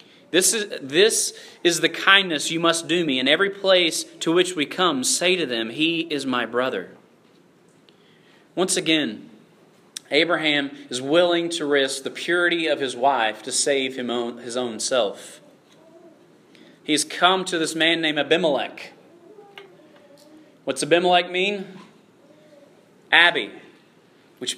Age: 30-49